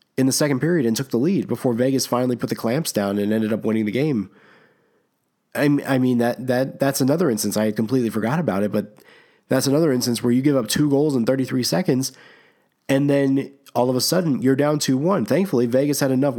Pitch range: 110-130 Hz